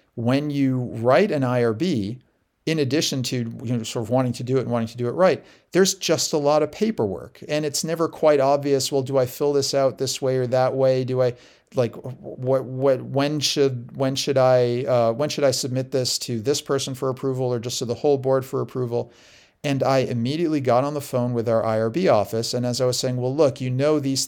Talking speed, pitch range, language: 230 wpm, 120-145 Hz, English